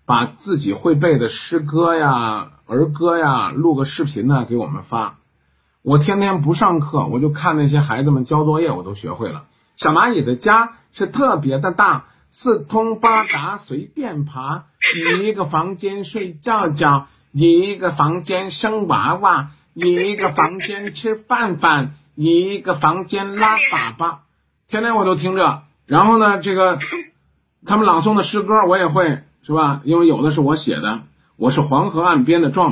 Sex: male